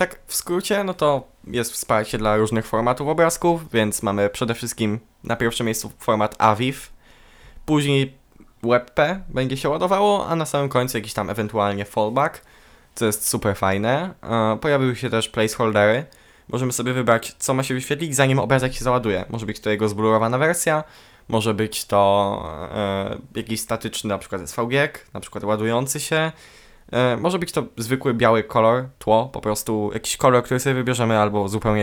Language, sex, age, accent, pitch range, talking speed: Polish, male, 10-29, native, 110-130 Hz, 160 wpm